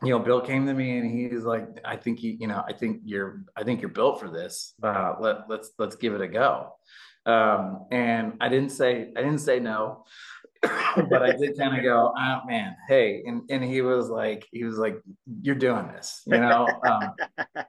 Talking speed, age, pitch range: 215 wpm, 30-49, 110-135 Hz